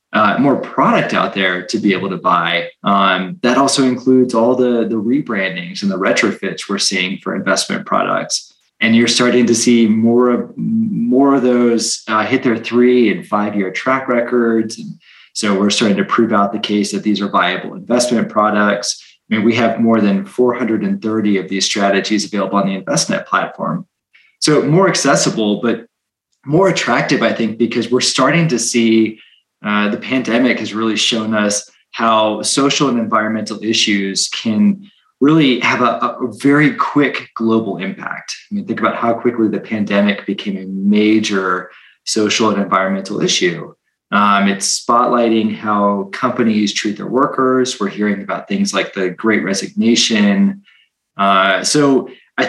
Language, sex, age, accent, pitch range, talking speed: English, male, 20-39, American, 105-130 Hz, 160 wpm